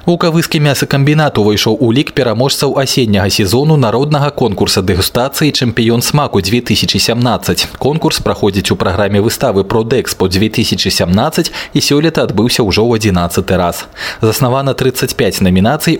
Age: 20-39